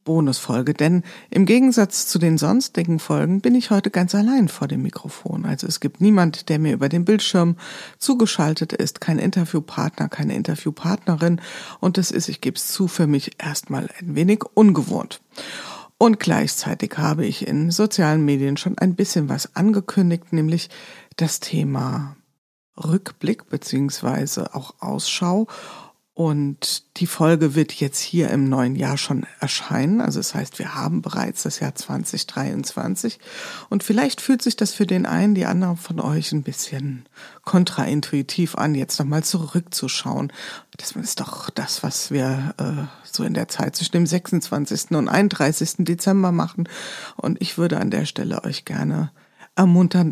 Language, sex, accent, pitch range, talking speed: German, female, German, 155-200 Hz, 155 wpm